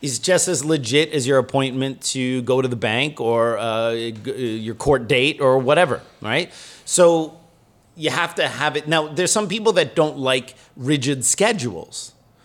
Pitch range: 125-160 Hz